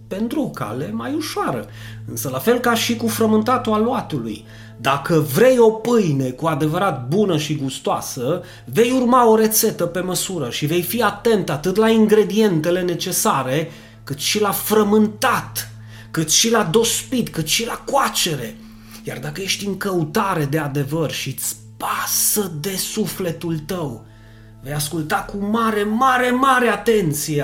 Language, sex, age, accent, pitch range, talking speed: Romanian, male, 30-49, native, 135-215 Hz, 145 wpm